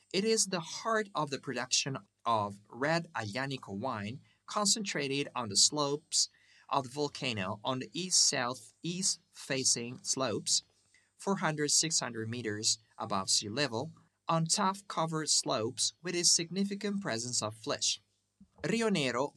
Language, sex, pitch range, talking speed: English, male, 110-165 Hz, 120 wpm